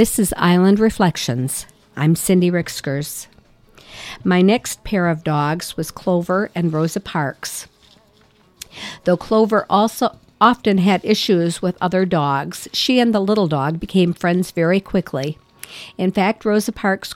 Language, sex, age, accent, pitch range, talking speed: English, female, 50-69, American, 165-200 Hz, 135 wpm